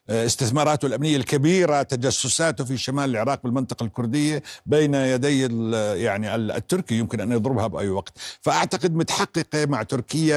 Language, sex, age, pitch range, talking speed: Arabic, male, 60-79, 105-145 Hz, 125 wpm